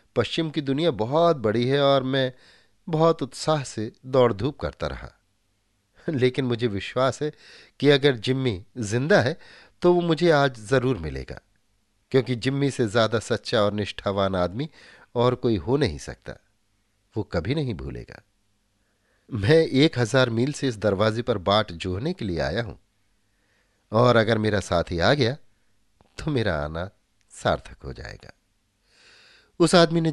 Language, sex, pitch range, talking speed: Hindi, male, 100-140 Hz, 150 wpm